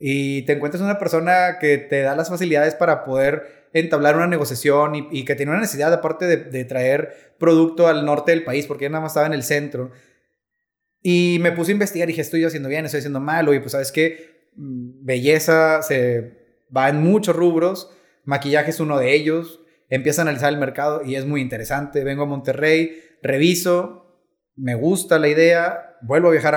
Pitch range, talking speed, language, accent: 140-170 Hz, 195 wpm, Spanish, Mexican